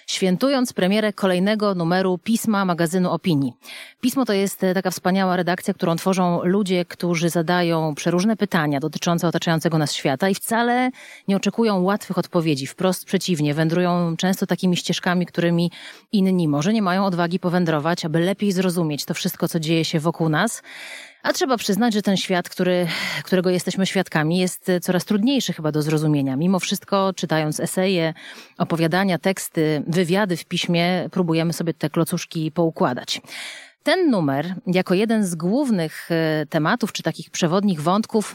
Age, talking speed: 30-49, 145 wpm